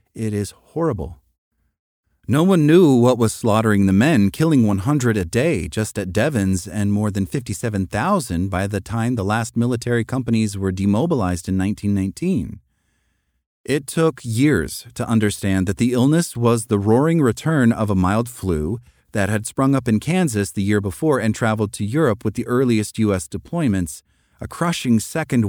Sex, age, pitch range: male, 40-59, 95-125 Hz